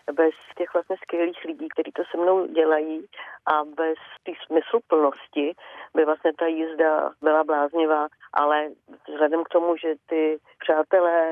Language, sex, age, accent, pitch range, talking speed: Czech, female, 40-59, native, 155-175 Hz, 150 wpm